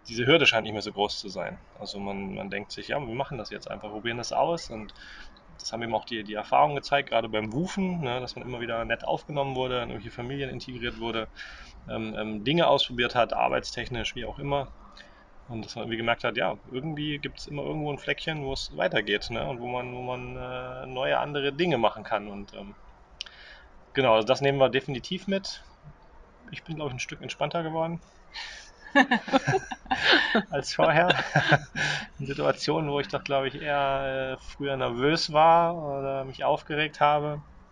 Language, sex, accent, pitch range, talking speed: German, male, German, 110-140 Hz, 190 wpm